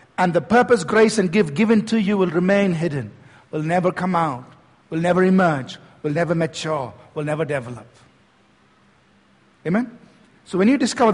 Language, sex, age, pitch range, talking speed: English, male, 50-69, 170-225 Hz, 160 wpm